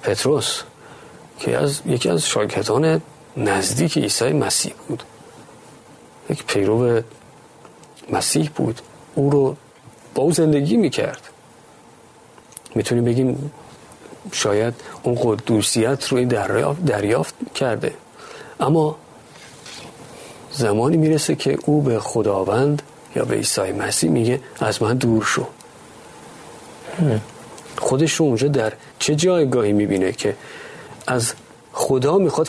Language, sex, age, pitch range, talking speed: Persian, male, 40-59, 115-155 Hz, 105 wpm